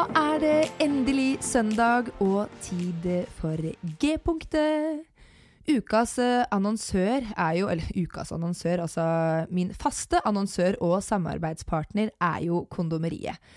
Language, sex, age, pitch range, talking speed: English, female, 20-39, 180-245 Hz, 120 wpm